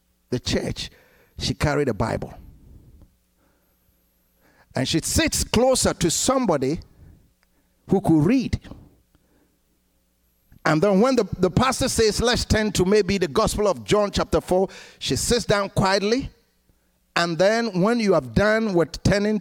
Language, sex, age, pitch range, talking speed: English, male, 60-79, 135-205 Hz, 135 wpm